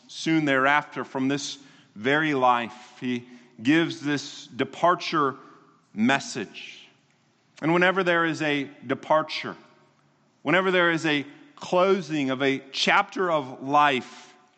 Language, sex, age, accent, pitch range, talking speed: English, male, 30-49, American, 140-185 Hz, 110 wpm